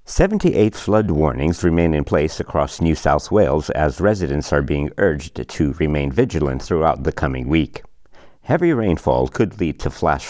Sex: male